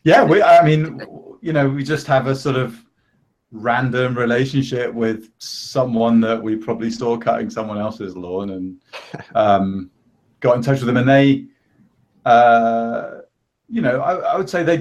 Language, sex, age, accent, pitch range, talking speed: English, male, 30-49, British, 100-130 Hz, 165 wpm